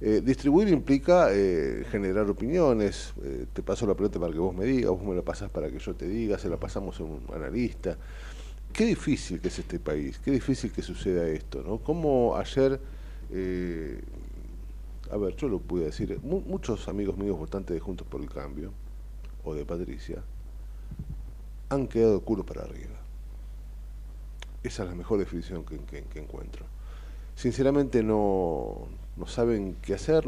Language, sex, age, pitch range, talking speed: Spanish, male, 40-59, 80-120 Hz, 170 wpm